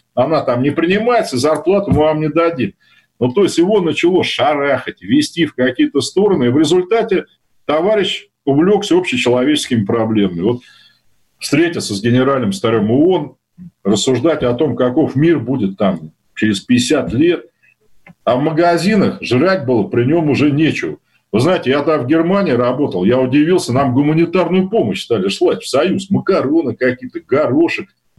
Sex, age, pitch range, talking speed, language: male, 50-69, 130-195 Hz, 145 wpm, Russian